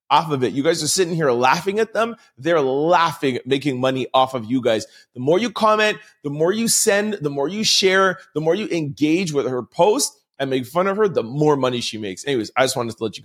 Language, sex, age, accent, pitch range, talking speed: English, male, 30-49, American, 130-185 Hz, 250 wpm